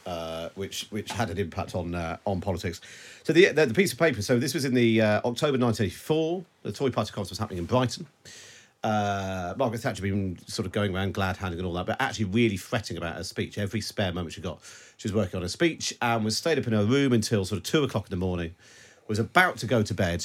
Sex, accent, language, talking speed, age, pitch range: male, British, English, 250 wpm, 40-59, 95-125 Hz